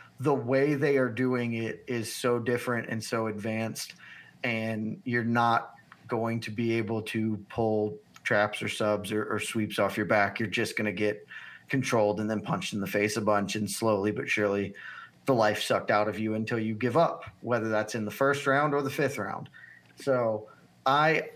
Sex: male